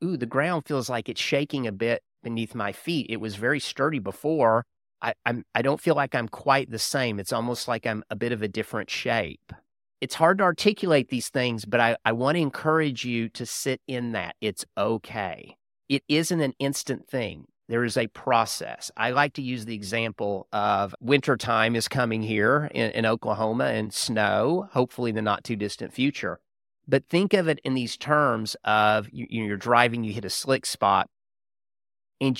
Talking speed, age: 190 wpm, 40-59